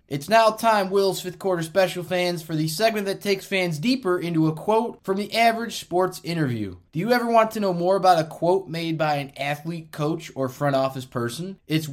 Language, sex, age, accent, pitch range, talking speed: English, male, 20-39, American, 150-190 Hz, 215 wpm